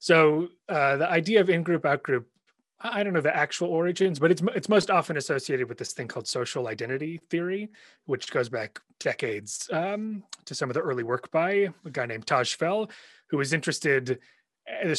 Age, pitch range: 30-49, 150-195 Hz